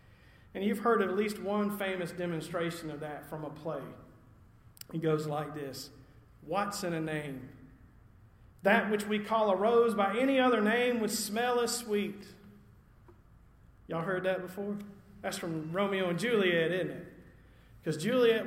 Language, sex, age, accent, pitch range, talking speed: English, male, 40-59, American, 155-205 Hz, 155 wpm